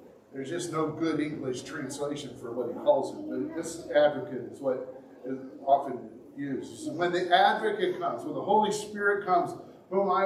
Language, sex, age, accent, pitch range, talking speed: English, male, 50-69, American, 155-200 Hz, 175 wpm